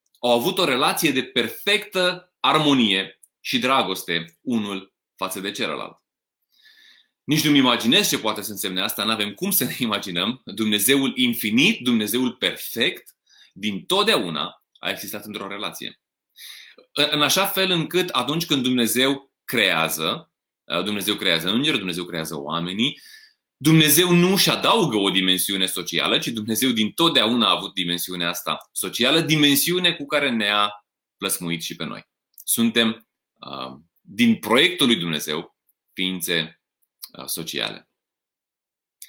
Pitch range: 95-155 Hz